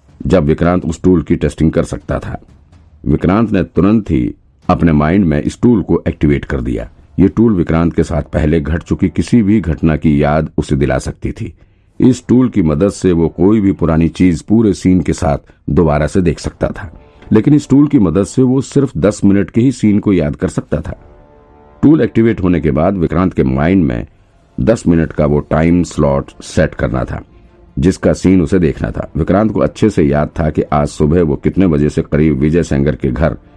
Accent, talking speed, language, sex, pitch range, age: native, 210 wpm, Hindi, male, 75-100 Hz, 50-69